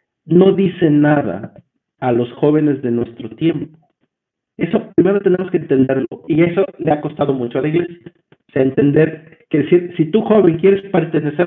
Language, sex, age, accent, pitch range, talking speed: Spanish, male, 50-69, Mexican, 135-170 Hz, 160 wpm